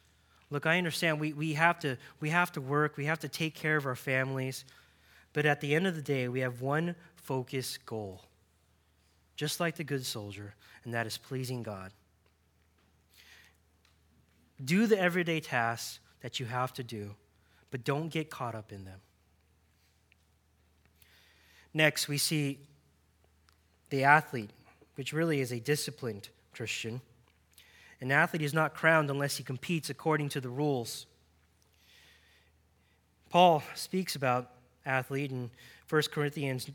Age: 20-39